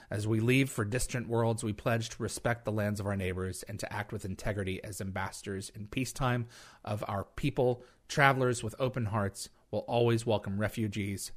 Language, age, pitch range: English, 30-49, 105-125 Hz